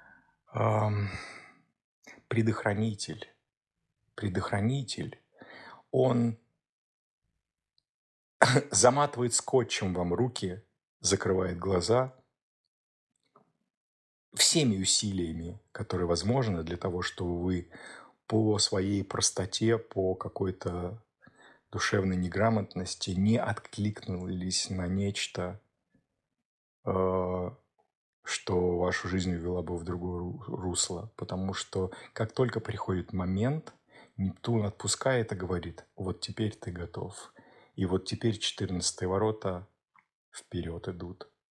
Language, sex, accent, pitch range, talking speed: Russian, male, native, 90-115 Hz, 85 wpm